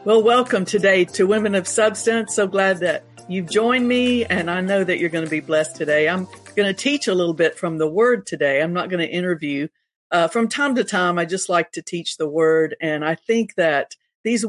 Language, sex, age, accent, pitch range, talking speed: English, female, 50-69, American, 160-200 Hz, 230 wpm